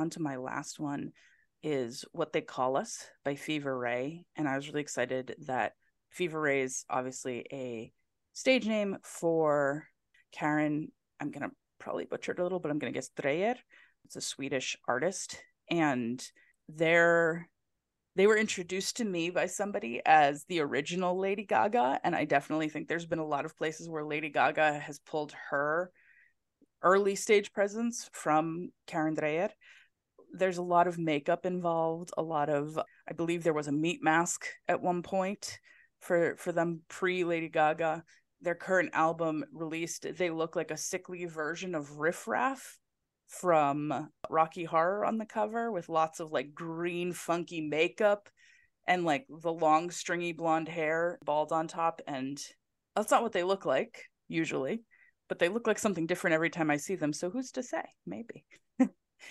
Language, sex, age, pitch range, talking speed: English, female, 20-39, 150-180 Hz, 165 wpm